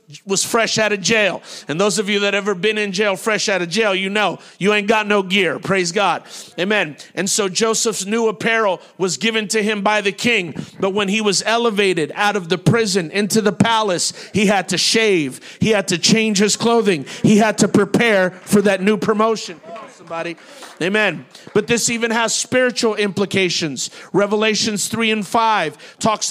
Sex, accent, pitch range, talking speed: male, American, 195-220 Hz, 190 wpm